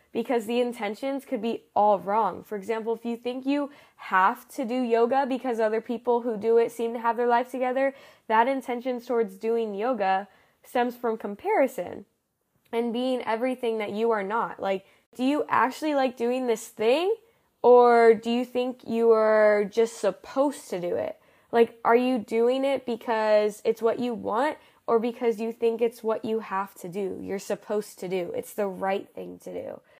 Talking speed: 185 wpm